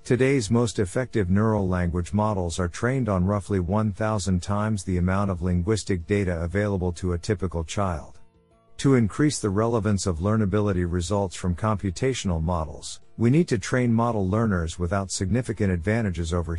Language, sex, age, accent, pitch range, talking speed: English, male, 50-69, American, 90-110 Hz, 150 wpm